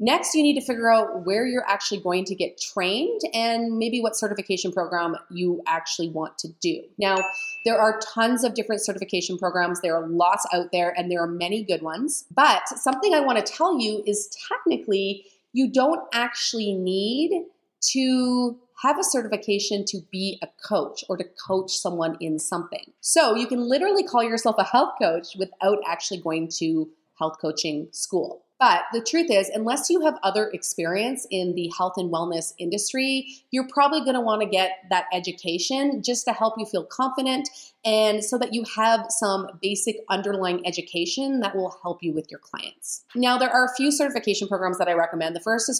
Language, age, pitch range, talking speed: English, 30-49, 175-240 Hz, 190 wpm